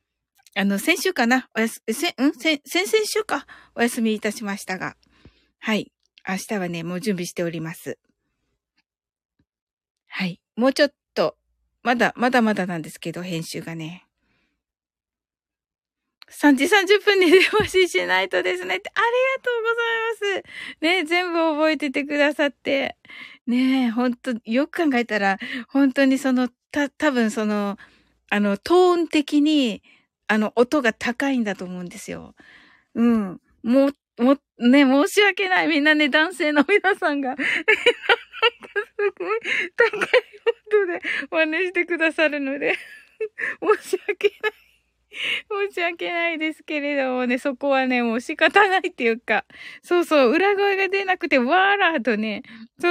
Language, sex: Japanese, female